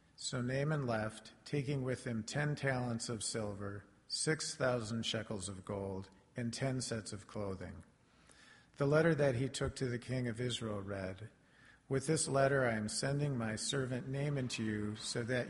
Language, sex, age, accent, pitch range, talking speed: English, male, 50-69, American, 110-135 Hz, 170 wpm